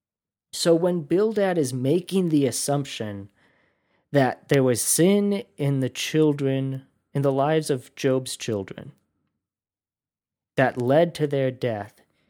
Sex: male